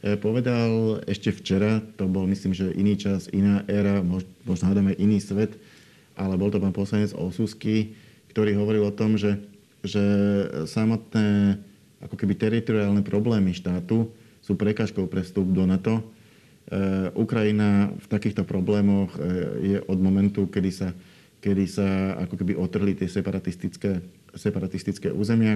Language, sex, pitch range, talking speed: Slovak, male, 95-105 Hz, 130 wpm